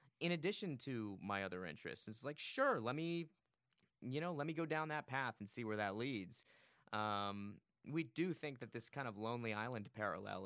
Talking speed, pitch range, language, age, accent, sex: 200 wpm, 100-145 Hz, English, 20-39, American, male